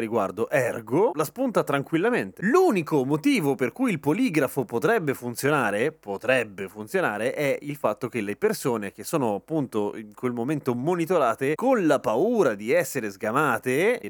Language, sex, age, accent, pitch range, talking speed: Italian, male, 30-49, native, 115-170 Hz, 150 wpm